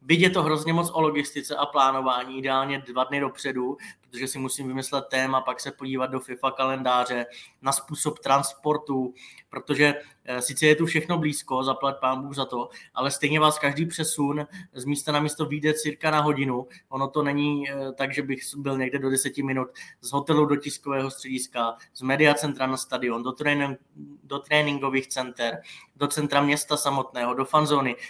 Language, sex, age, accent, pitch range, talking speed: Czech, male, 20-39, native, 130-150 Hz, 180 wpm